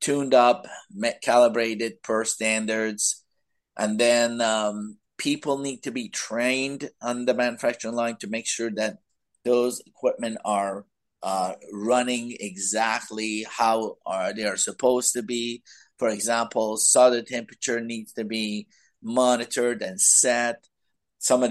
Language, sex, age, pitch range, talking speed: English, male, 50-69, 115-135 Hz, 130 wpm